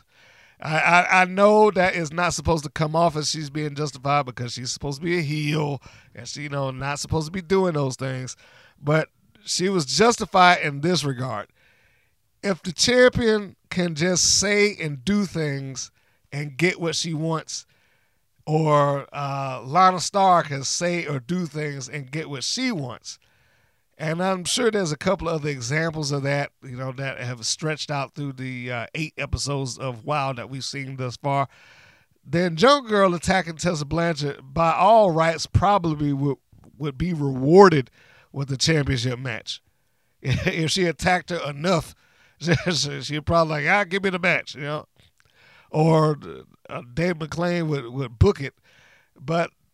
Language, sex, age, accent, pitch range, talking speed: English, male, 50-69, American, 135-175 Hz, 165 wpm